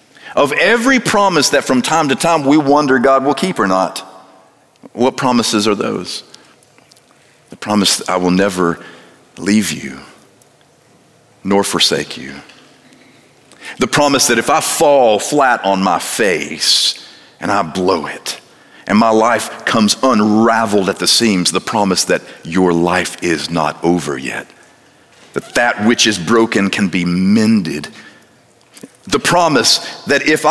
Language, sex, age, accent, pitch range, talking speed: English, male, 50-69, American, 100-150 Hz, 145 wpm